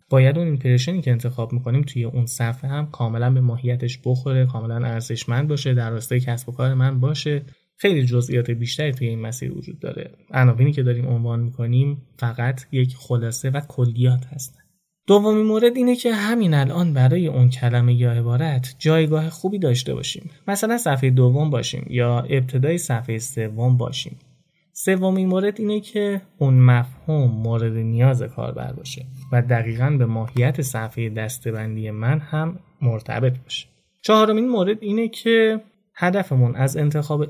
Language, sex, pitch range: Persian, male, 120-160 Hz